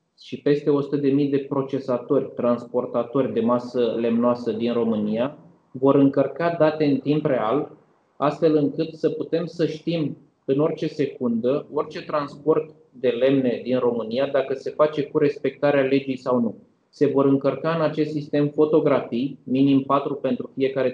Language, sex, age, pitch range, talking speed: Romanian, male, 20-39, 125-145 Hz, 145 wpm